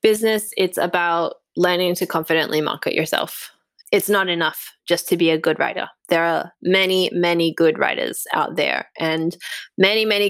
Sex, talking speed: female, 165 wpm